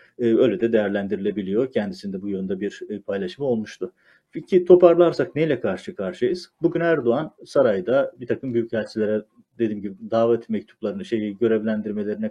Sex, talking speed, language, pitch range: male, 120 wpm, Turkish, 110-145 Hz